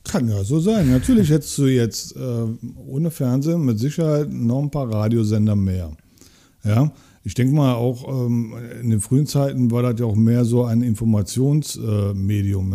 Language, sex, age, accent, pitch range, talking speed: German, male, 50-69, German, 110-130 Hz, 170 wpm